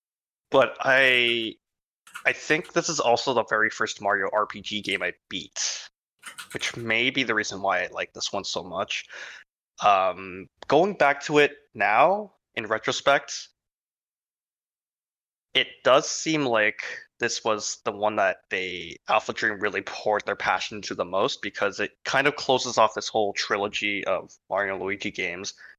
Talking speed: 155 wpm